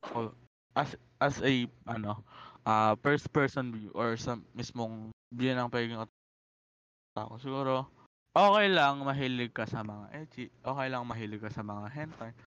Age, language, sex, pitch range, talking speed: 20-39, Filipino, male, 115-150 Hz, 150 wpm